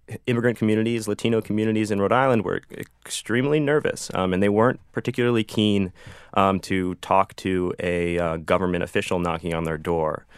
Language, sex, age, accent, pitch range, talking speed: English, male, 30-49, American, 90-110 Hz, 160 wpm